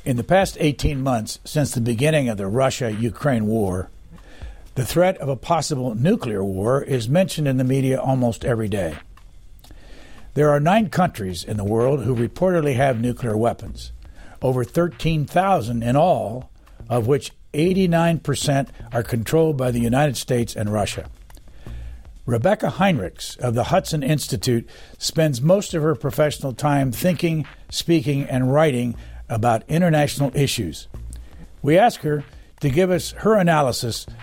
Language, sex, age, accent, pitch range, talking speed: English, male, 60-79, American, 110-155 Hz, 140 wpm